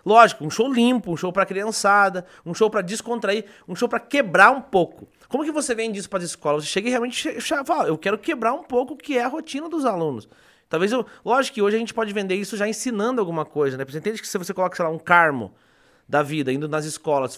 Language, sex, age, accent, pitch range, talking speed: Portuguese, male, 30-49, Brazilian, 170-240 Hz, 260 wpm